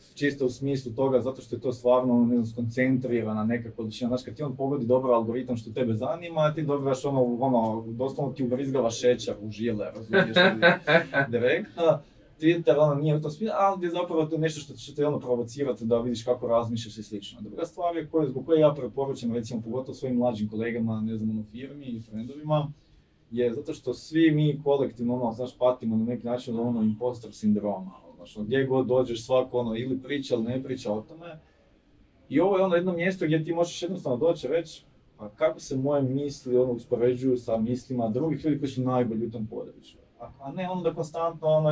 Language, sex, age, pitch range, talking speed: Croatian, male, 20-39, 120-145 Hz, 205 wpm